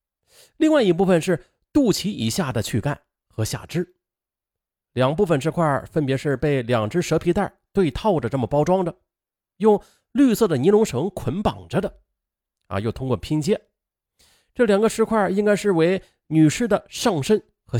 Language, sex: Chinese, male